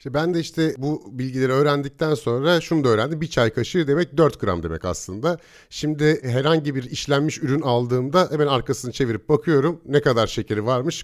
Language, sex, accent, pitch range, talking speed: Turkish, male, native, 115-160 Hz, 175 wpm